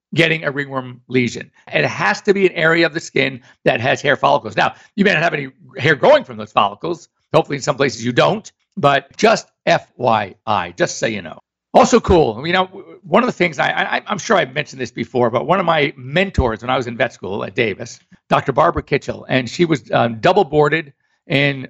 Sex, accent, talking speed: male, American, 220 wpm